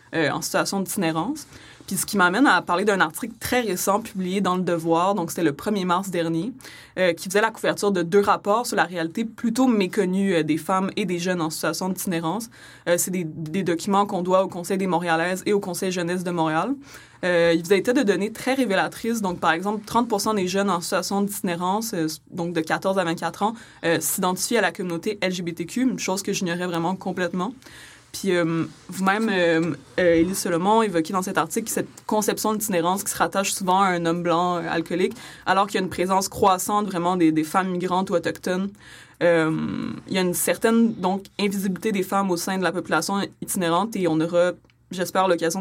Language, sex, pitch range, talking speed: French, female, 170-200 Hz, 205 wpm